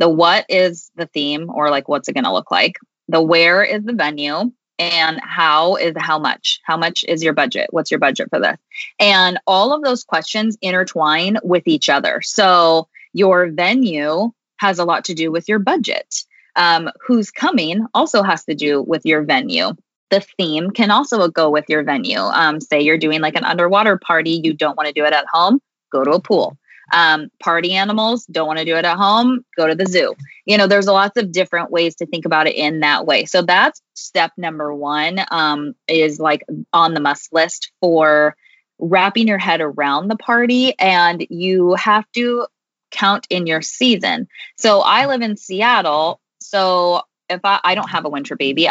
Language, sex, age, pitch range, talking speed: English, female, 20-39, 155-205 Hz, 195 wpm